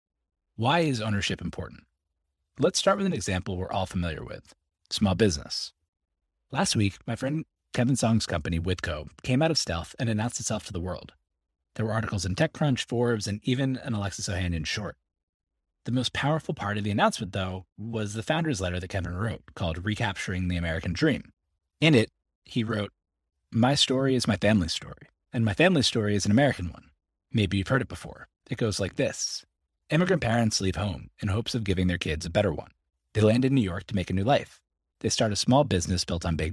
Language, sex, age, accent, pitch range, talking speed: English, male, 30-49, American, 85-115 Hz, 200 wpm